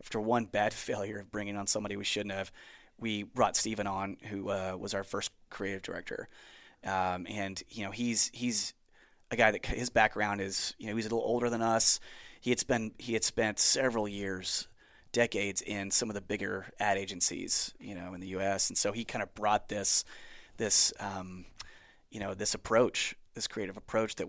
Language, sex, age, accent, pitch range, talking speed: English, male, 30-49, American, 100-120 Hz, 200 wpm